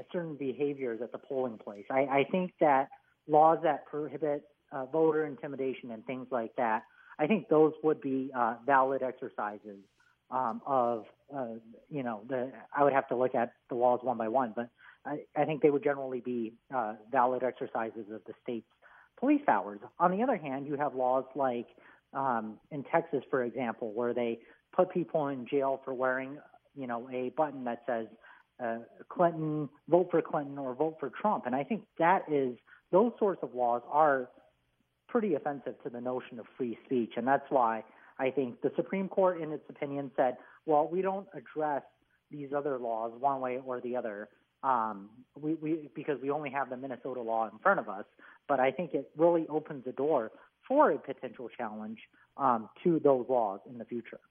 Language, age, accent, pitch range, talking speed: English, 40-59, American, 120-150 Hz, 185 wpm